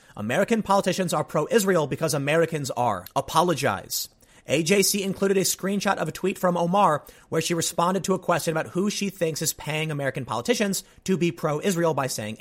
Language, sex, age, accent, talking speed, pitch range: English, male, 30-49, American, 175 wpm, 150-205 Hz